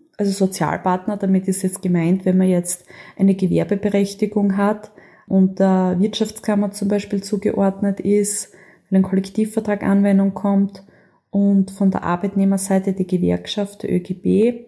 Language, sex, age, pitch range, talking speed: German, female, 20-39, 185-210 Hz, 130 wpm